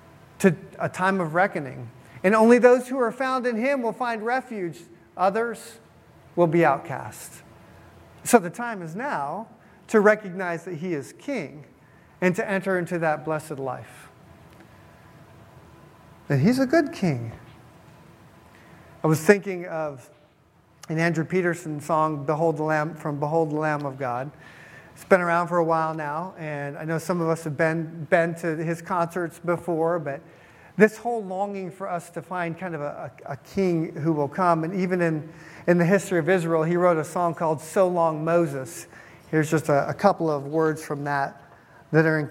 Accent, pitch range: American, 155-190 Hz